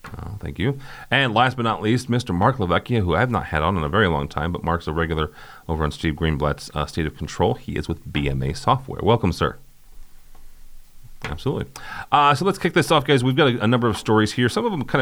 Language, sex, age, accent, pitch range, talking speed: English, male, 40-59, American, 80-100 Hz, 240 wpm